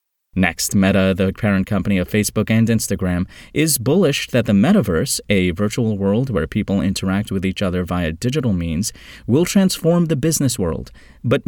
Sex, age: male, 30-49